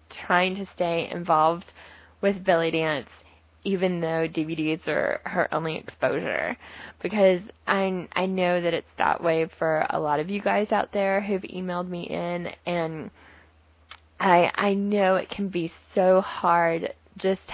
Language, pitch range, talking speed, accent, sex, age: English, 160-195 Hz, 150 wpm, American, female, 10-29